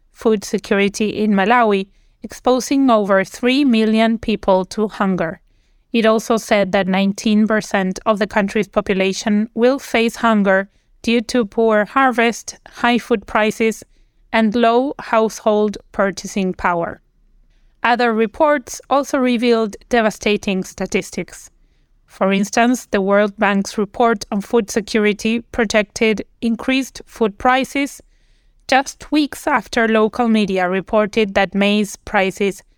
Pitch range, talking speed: 200-235 Hz, 115 wpm